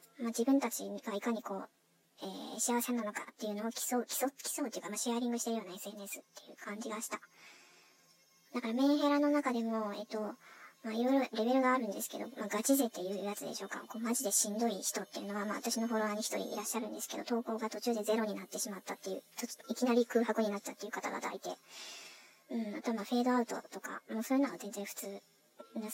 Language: Japanese